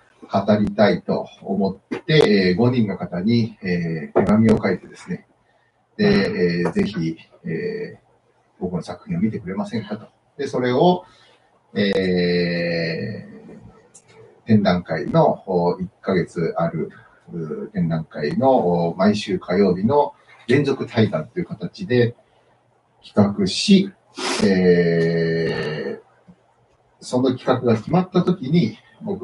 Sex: male